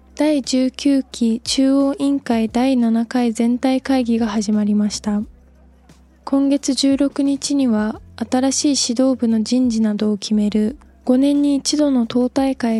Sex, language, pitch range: female, Japanese, 215-260 Hz